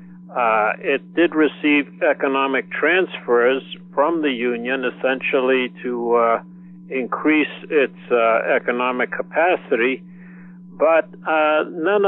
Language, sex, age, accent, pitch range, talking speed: English, male, 60-79, American, 130-180 Hz, 100 wpm